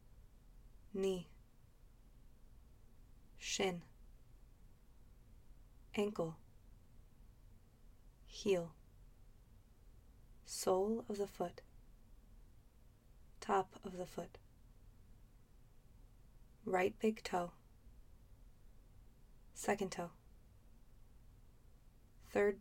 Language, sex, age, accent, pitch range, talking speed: English, female, 20-39, American, 115-175 Hz, 50 wpm